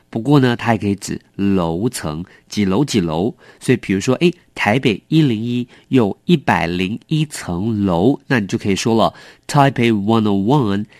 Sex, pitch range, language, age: male, 90-130 Hz, English, 50-69